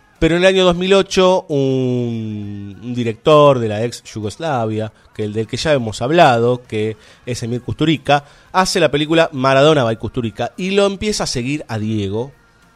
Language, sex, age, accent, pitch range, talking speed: Spanish, male, 30-49, Argentinian, 110-140 Hz, 165 wpm